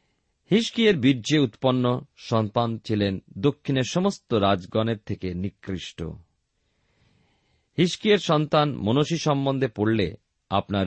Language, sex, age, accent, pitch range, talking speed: Bengali, male, 40-59, native, 95-145 Hz, 75 wpm